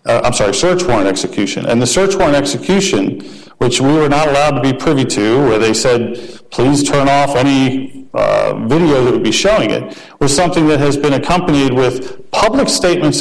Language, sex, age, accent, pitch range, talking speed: English, male, 50-69, American, 130-165 Hz, 195 wpm